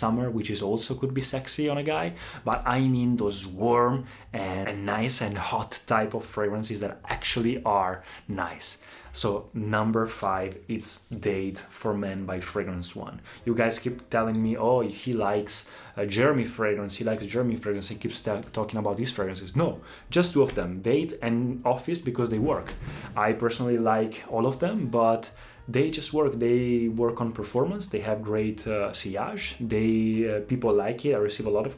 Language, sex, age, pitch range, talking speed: Italian, male, 20-39, 105-130 Hz, 185 wpm